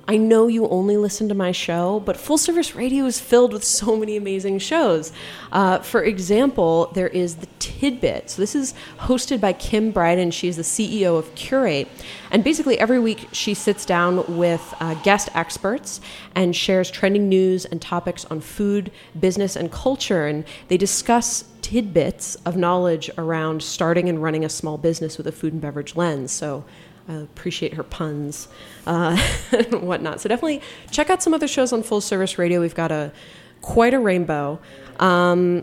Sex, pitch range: female, 165-210 Hz